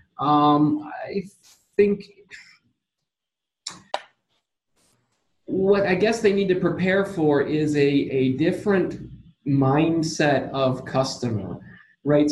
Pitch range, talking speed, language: 130-155 Hz, 95 wpm, English